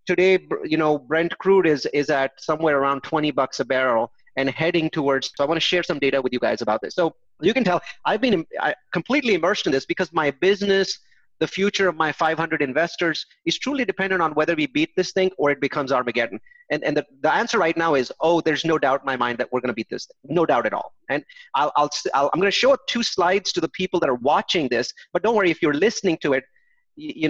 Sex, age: male, 30-49